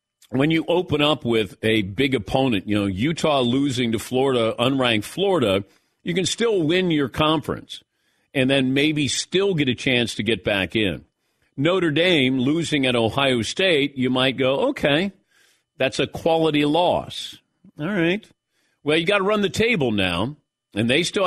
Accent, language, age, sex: American, English, 50-69, male